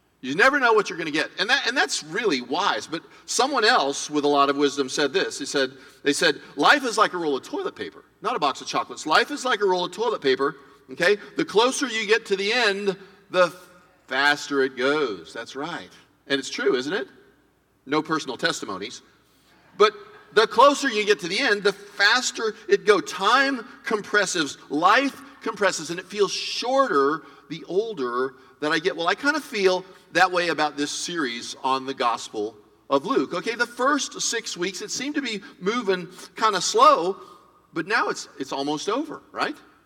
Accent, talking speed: American, 195 wpm